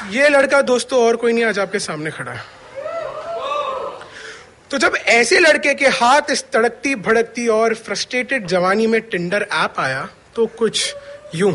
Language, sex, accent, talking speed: Hindi, male, native, 150 wpm